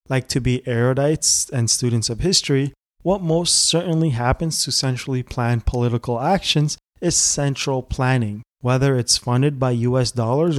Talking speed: 145 wpm